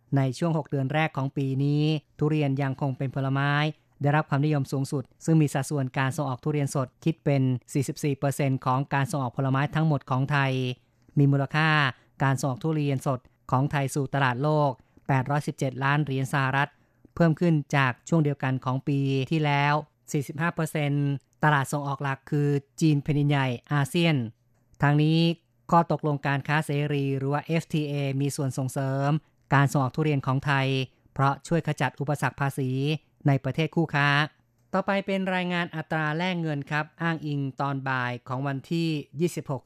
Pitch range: 135-150 Hz